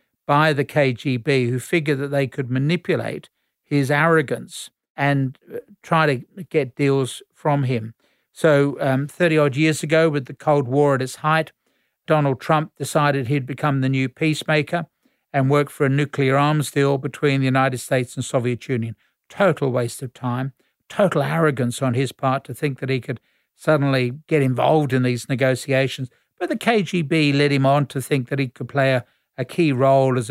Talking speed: 175 wpm